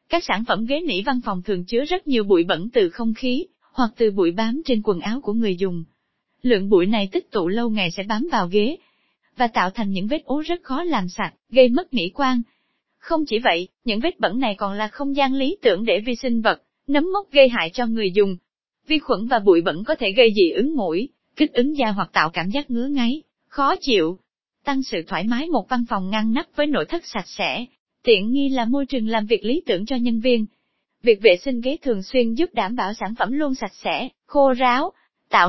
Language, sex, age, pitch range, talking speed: Vietnamese, female, 20-39, 215-285 Hz, 235 wpm